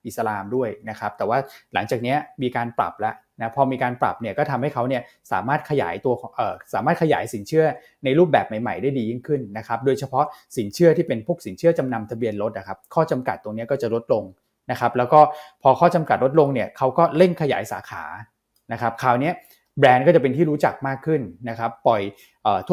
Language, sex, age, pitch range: Thai, male, 20-39, 115-150 Hz